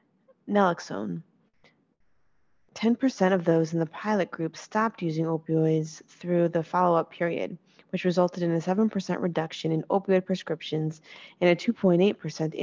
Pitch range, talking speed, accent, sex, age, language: 170-200 Hz, 130 wpm, American, female, 20-39, English